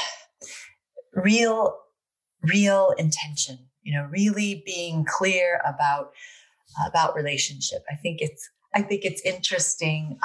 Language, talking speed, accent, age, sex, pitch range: English, 105 wpm, American, 30-49, female, 160-230 Hz